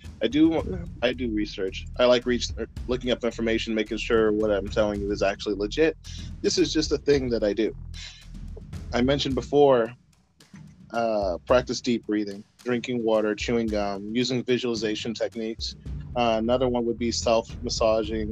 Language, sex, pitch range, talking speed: English, male, 100-125 Hz, 155 wpm